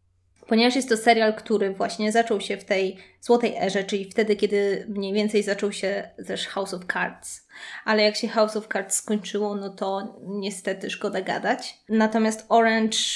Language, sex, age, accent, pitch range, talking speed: Polish, female, 20-39, native, 200-225 Hz, 170 wpm